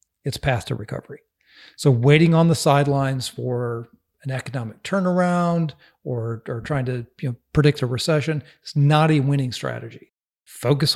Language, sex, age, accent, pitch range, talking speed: English, male, 40-59, American, 130-155 Hz, 140 wpm